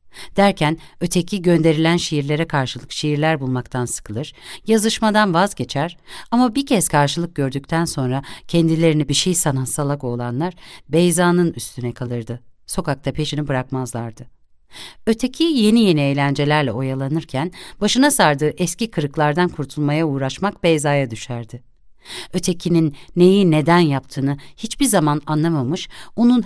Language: Turkish